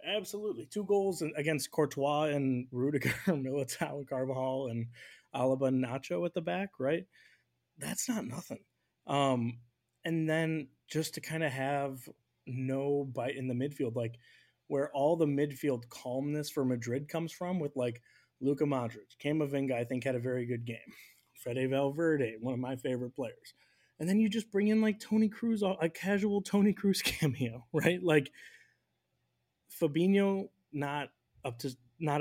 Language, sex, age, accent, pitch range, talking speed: English, male, 20-39, American, 125-160 Hz, 155 wpm